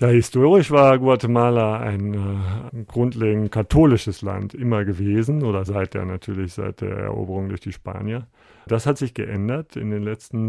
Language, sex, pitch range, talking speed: German, male, 105-115 Hz, 165 wpm